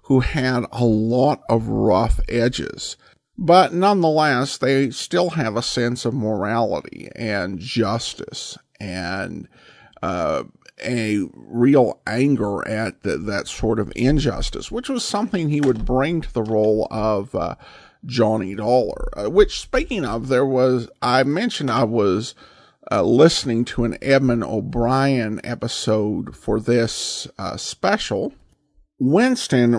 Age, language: 50-69, English